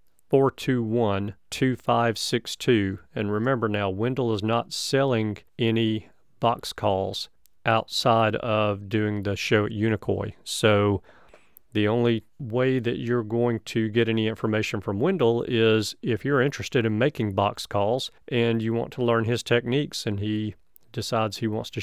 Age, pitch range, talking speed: 40-59, 110-125 Hz, 140 wpm